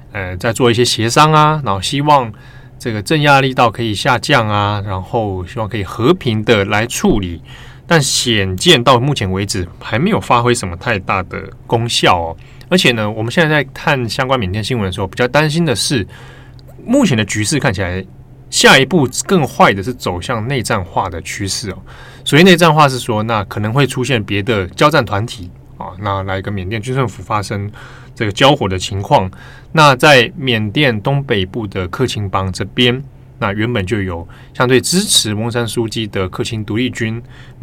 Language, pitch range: Chinese, 100-130 Hz